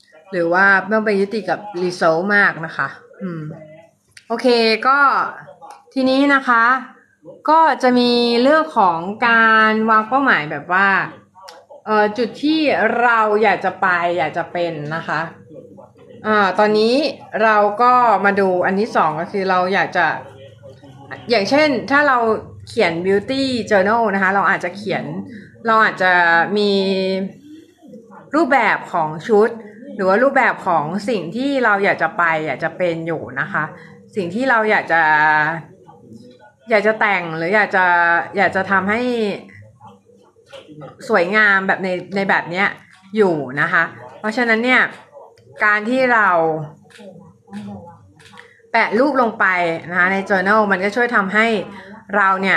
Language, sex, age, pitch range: Thai, female, 20-39, 170-235 Hz